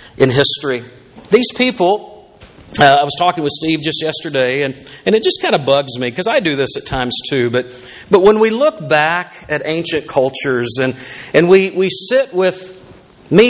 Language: English